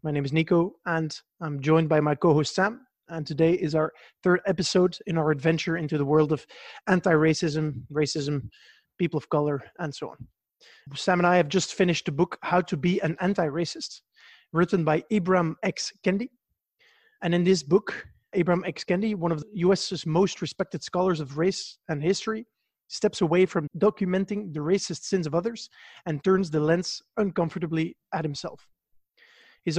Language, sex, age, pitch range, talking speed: English, male, 30-49, 160-195 Hz, 175 wpm